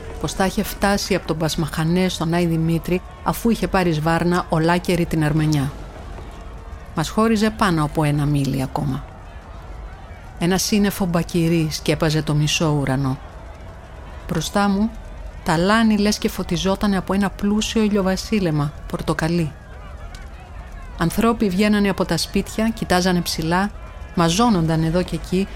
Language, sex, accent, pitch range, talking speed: Greek, female, native, 150-195 Hz, 125 wpm